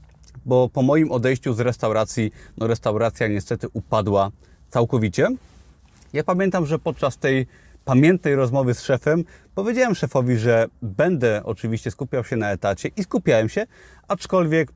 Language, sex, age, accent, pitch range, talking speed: Polish, male, 30-49, native, 115-145 Hz, 135 wpm